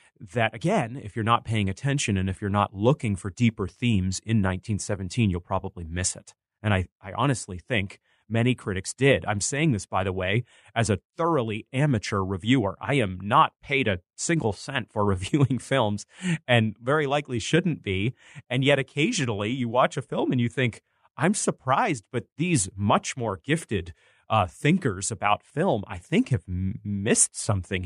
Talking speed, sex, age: 175 wpm, male, 30-49